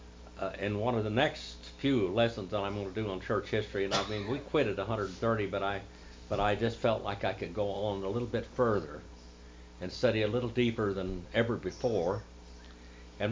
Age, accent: 60-79, American